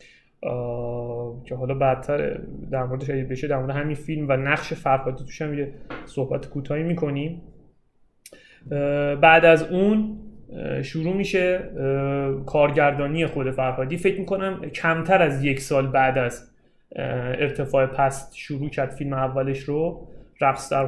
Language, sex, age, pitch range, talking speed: Persian, male, 30-49, 135-165 Hz, 130 wpm